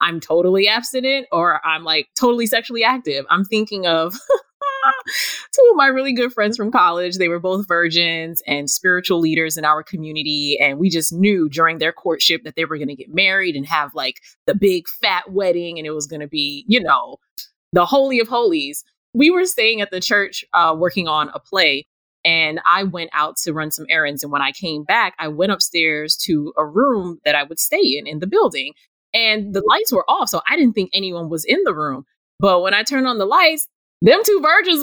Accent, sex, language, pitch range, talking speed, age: American, female, English, 160-255 Hz, 215 wpm, 20-39